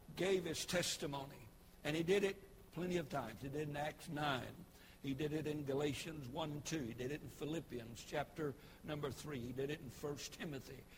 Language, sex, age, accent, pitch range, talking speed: English, male, 60-79, American, 130-175 Hz, 210 wpm